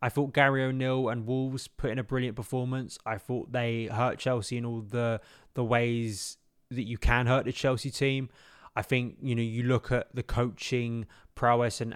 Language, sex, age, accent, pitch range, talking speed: English, male, 20-39, British, 110-125 Hz, 195 wpm